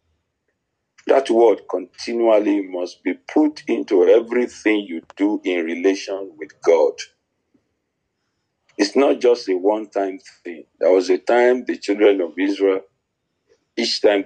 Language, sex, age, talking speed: English, male, 50-69, 130 wpm